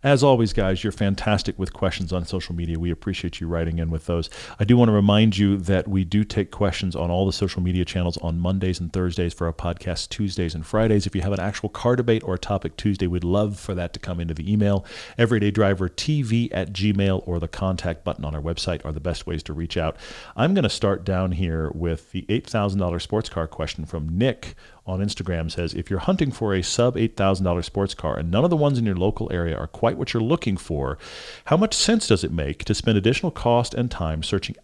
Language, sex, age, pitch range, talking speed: English, male, 40-59, 85-110 Hz, 235 wpm